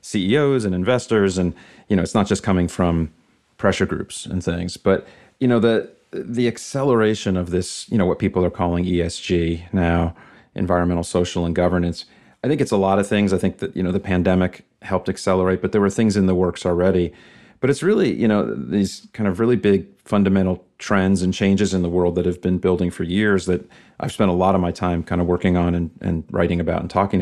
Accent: American